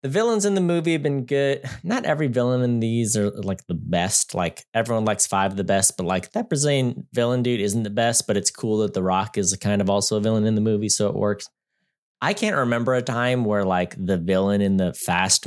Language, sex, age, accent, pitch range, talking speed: English, male, 30-49, American, 95-130 Hz, 245 wpm